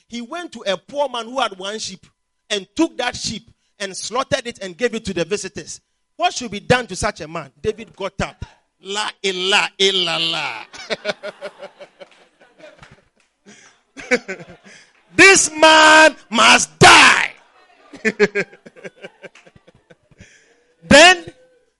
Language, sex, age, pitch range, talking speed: English, male, 40-59, 195-295 Hz, 125 wpm